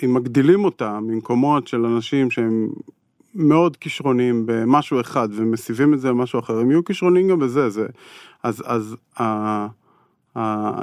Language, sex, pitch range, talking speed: Hebrew, male, 115-135 Hz, 145 wpm